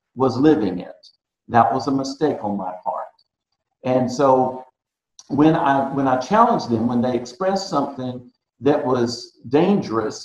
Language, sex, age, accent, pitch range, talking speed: English, male, 50-69, American, 120-145 Hz, 145 wpm